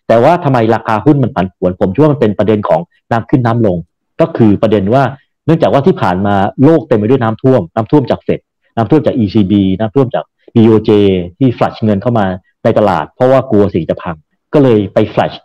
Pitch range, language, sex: 105-135 Hz, Thai, male